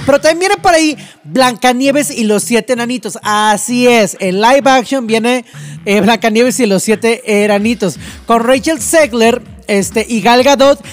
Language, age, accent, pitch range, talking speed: Spanish, 30-49, Mexican, 215-280 Hz, 150 wpm